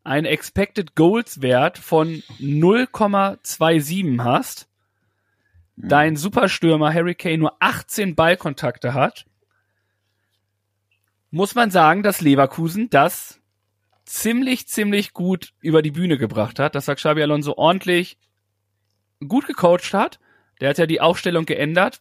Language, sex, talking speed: German, male, 110 wpm